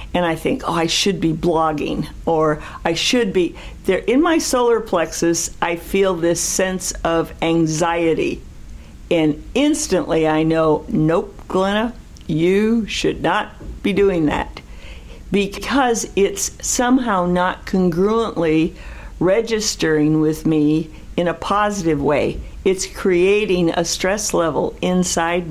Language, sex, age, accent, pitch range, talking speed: English, female, 60-79, American, 160-200 Hz, 125 wpm